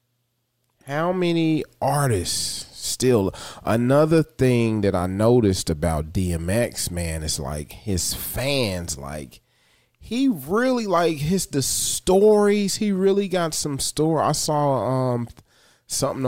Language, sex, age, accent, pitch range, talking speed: English, male, 30-49, American, 100-160 Hz, 120 wpm